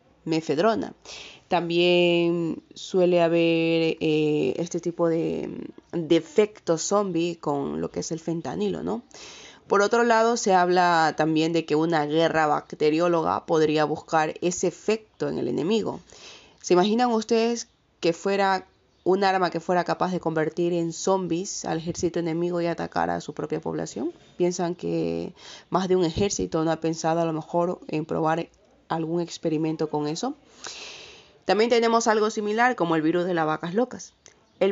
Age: 20-39